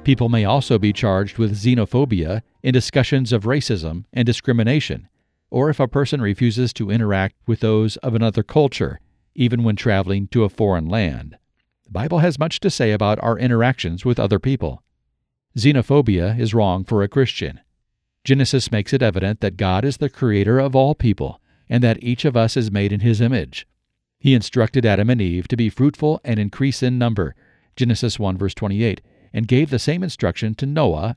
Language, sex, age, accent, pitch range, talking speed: English, male, 50-69, American, 105-125 Hz, 180 wpm